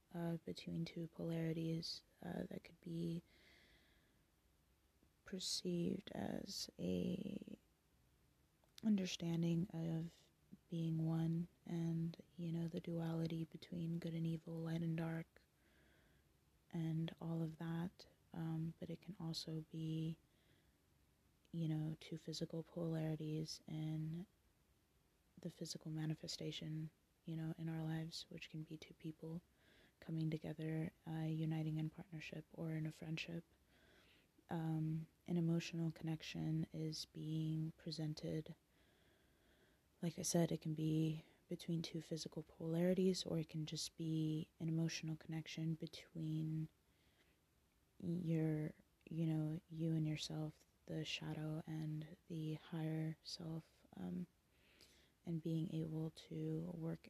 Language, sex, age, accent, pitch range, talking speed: English, female, 20-39, American, 155-165 Hz, 115 wpm